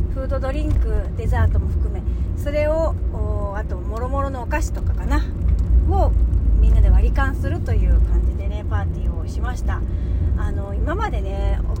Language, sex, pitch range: Japanese, female, 80-90 Hz